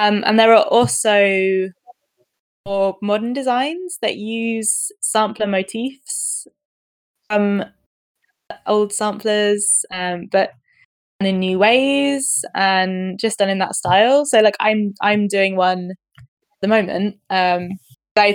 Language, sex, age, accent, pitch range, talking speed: English, female, 20-39, British, 185-225 Hz, 125 wpm